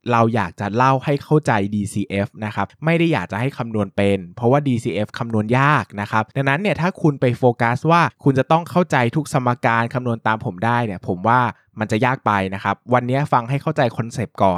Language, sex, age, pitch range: Thai, male, 20-39, 105-135 Hz